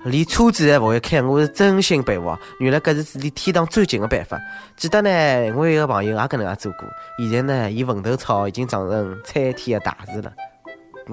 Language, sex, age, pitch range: Chinese, male, 20-39, 115-160 Hz